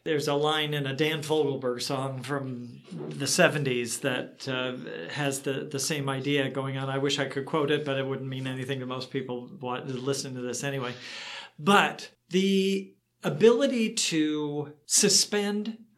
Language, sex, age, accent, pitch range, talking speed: English, male, 40-59, American, 140-195 Hz, 160 wpm